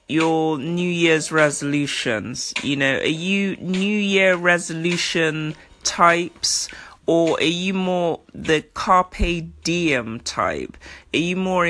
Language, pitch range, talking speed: English, 150-180 Hz, 120 wpm